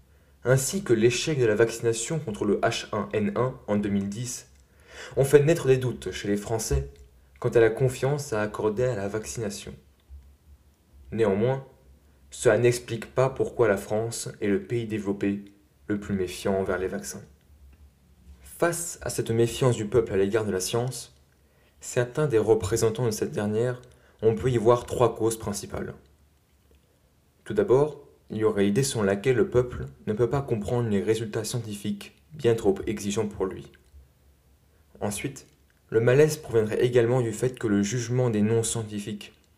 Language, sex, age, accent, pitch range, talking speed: French, male, 20-39, French, 75-120 Hz, 155 wpm